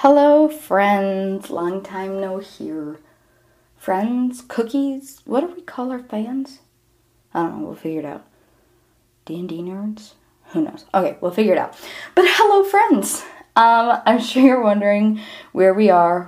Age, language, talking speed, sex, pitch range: 20-39, English, 150 wpm, female, 180-235 Hz